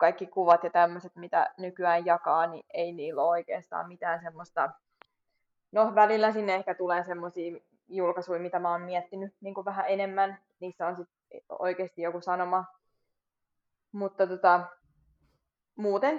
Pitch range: 170-195 Hz